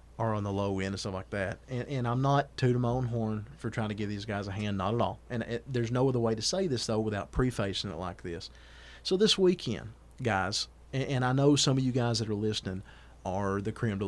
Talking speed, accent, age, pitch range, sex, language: 260 wpm, American, 40-59, 95-120 Hz, male, English